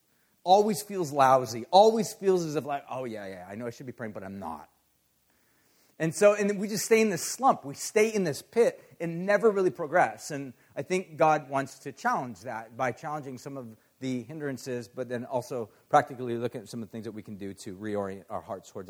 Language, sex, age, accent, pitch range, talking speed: English, male, 40-59, American, 135-175 Hz, 225 wpm